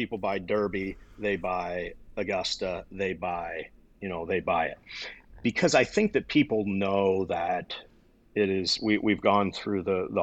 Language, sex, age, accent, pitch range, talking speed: English, male, 40-59, American, 95-105 Hz, 160 wpm